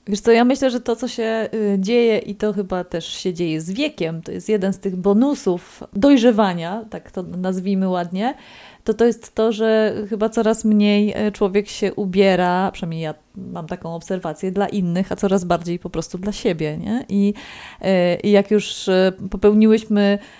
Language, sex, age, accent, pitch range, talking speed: Polish, female, 30-49, native, 185-220 Hz, 175 wpm